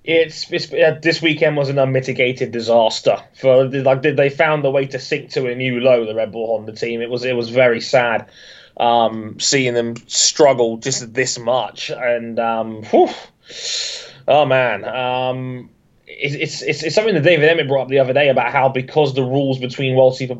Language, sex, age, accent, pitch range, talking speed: English, male, 20-39, British, 125-145 Hz, 195 wpm